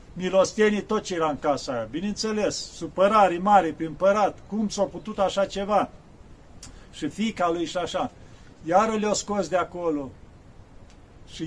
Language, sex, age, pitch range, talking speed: Romanian, male, 50-69, 170-210 Hz, 145 wpm